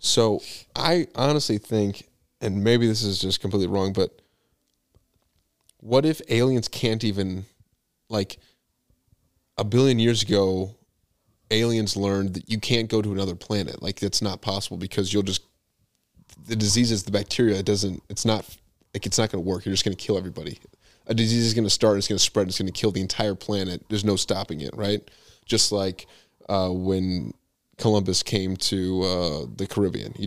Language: English